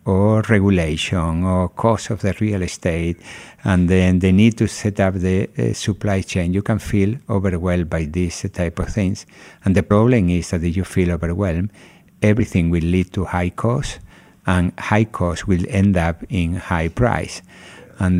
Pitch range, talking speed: 90-100 Hz, 180 wpm